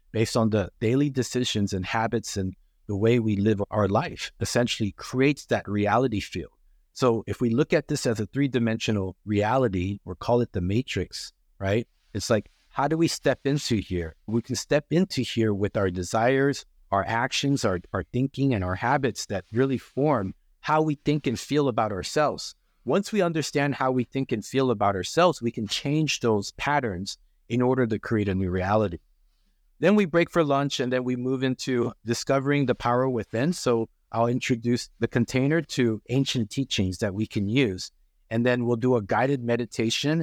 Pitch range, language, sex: 105-130 Hz, English, male